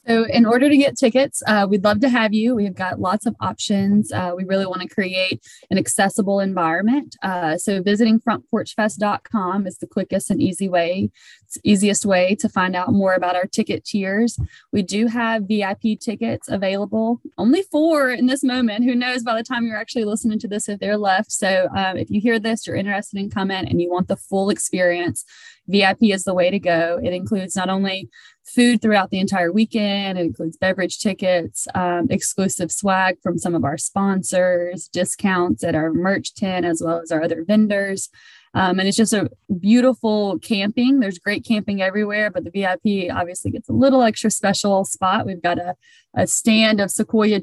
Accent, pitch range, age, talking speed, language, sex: American, 180-220 Hz, 20-39, 195 wpm, English, female